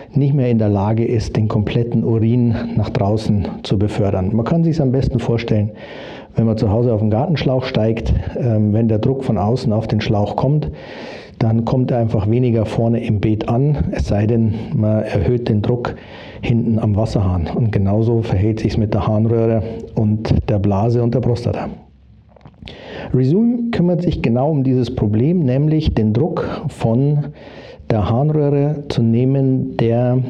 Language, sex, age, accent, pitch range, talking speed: German, male, 50-69, Austrian, 110-135 Hz, 170 wpm